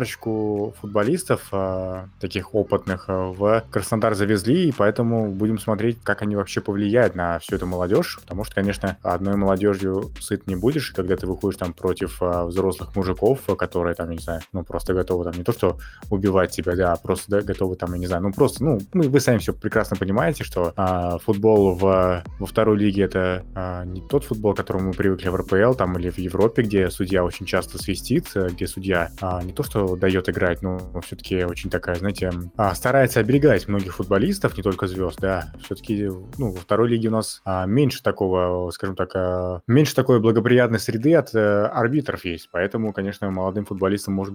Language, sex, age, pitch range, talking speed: Russian, male, 20-39, 90-105 Hz, 185 wpm